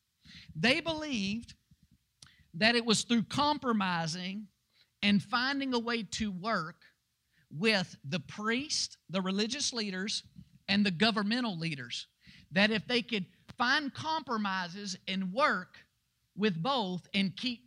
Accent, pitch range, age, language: American, 145-210 Hz, 50-69, English